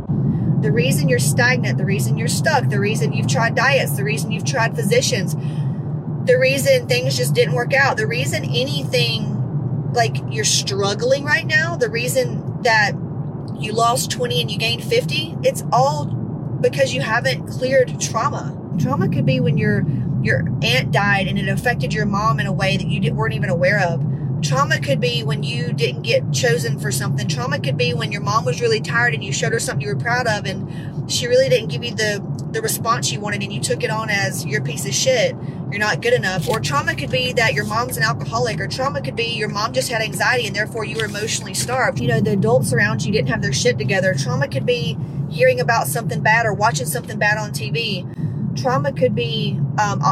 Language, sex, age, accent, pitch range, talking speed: English, female, 30-49, American, 140-165 Hz, 215 wpm